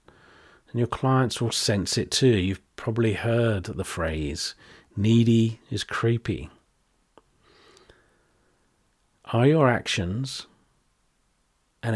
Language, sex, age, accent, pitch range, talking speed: English, male, 40-59, British, 90-120 Hz, 90 wpm